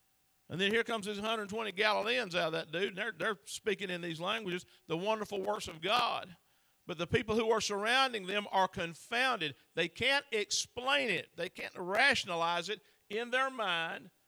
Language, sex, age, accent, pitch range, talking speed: English, male, 50-69, American, 160-215 Hz, 180 wpm